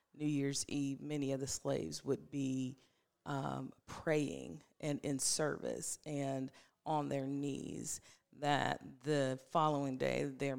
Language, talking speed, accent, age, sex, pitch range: English, 130 wpm, American, 40-59, female, 135-155 Hz